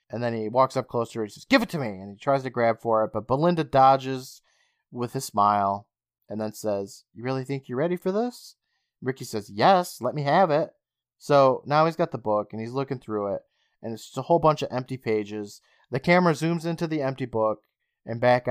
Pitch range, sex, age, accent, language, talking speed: 110-145 Hz, male, 30-49, American, English, 235 wpm